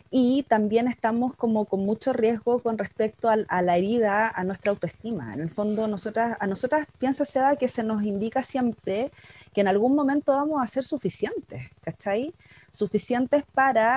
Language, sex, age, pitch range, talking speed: Spanish, female, 30-49, 200-250 Hz, 170 wpm